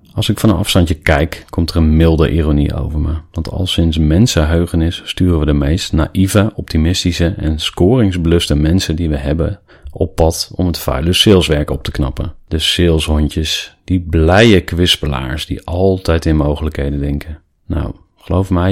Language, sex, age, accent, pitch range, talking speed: Dutch, male, 40-59, Dutch, 75-95 Hz, 165 wpm